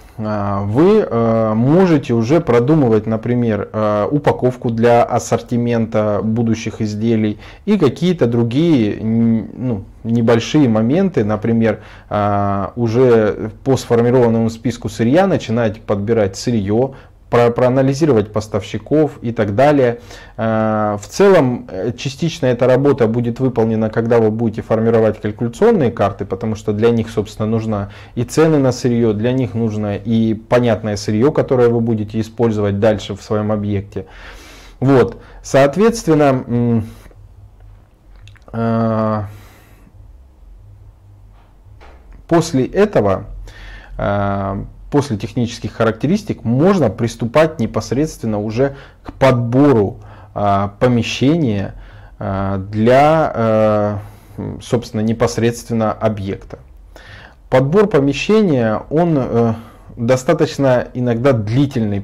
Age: 20-39